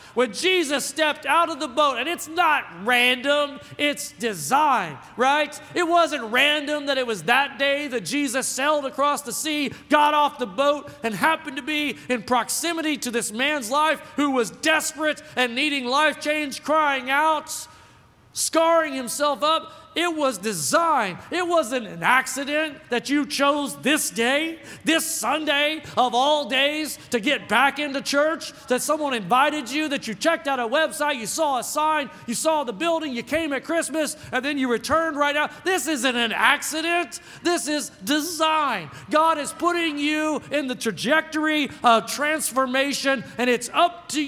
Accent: American